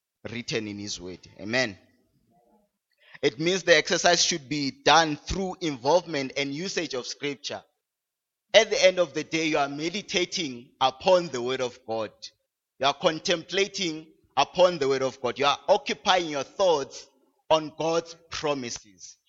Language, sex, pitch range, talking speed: English, male, 125-175 Hz, 150 wpm